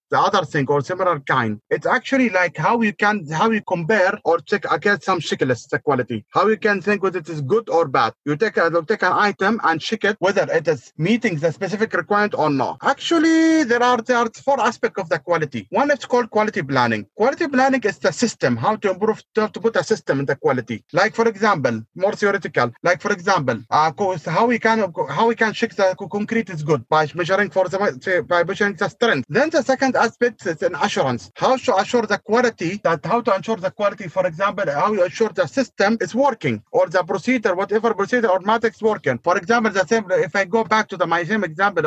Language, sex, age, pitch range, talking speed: English, male, 30-49, 180-225 Hz, 225 wpm